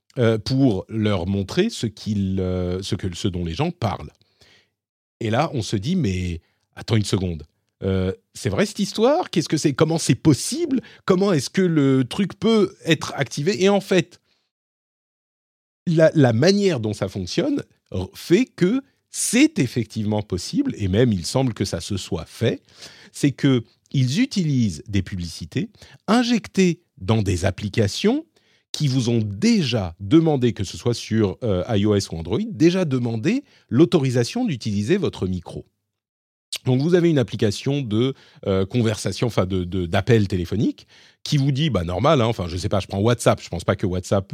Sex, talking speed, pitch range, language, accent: male, 165 wpm, 95-155 Hz, French, French